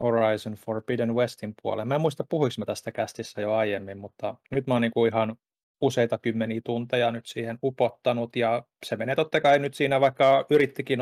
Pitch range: 110-125 Hz